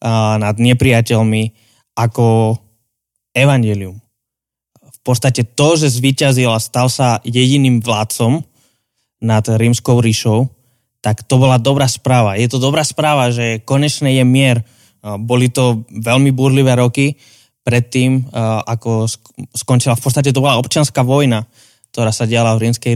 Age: 20-39